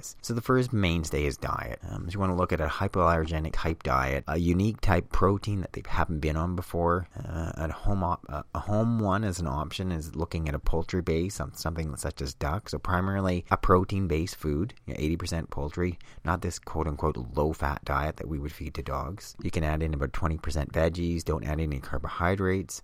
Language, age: English, 30-49